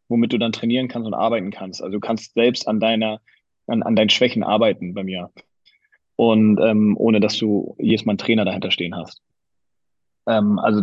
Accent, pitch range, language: German, 110-120 Hz, German